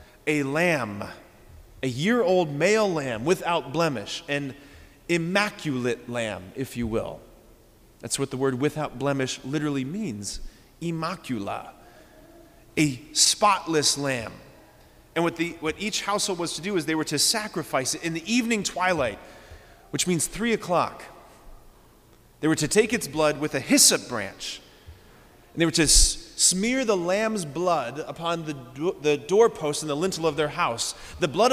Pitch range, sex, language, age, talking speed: 145-210 Hz, male, English, 30-49, 150 wpm